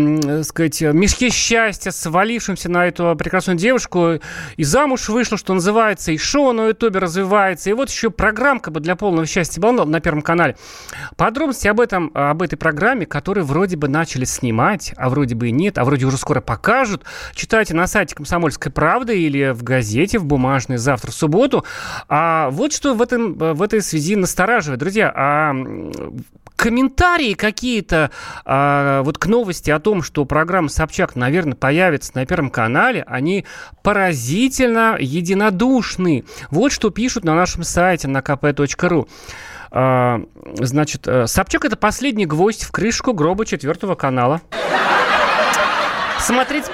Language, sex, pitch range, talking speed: Russian, male, 145-210 Hz, 145 wpm